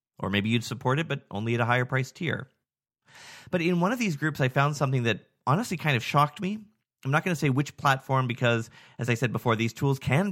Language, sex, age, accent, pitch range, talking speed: English, male, 30-49, American, 120-150 Hz, 245 wpm